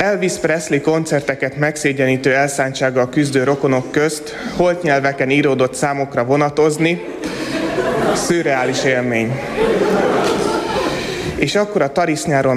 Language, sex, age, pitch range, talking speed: Hungarian, male, 30-49, 130-165 Hz, 95 wpm